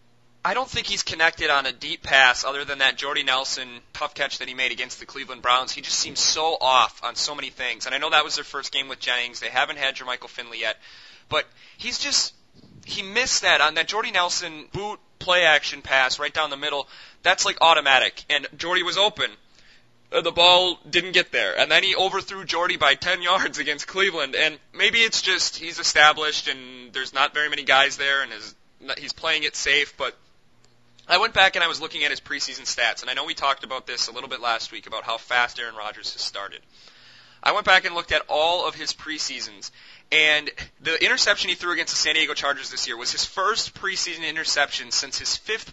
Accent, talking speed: American, 220 wpm